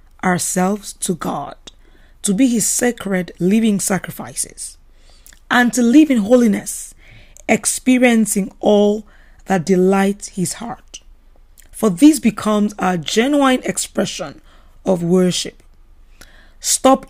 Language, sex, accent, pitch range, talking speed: English, female, Nigerian, 180-235 Hz, 100 wpm